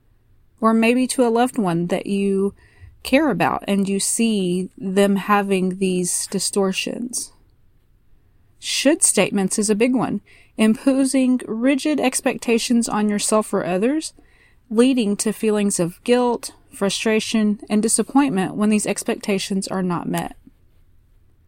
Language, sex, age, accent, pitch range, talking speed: English, female, 30-49, American, 190-240 Hz, 125 wpm